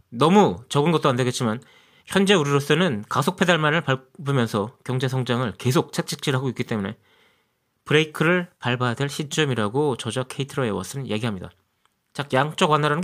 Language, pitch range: Korean, 125-175 Hz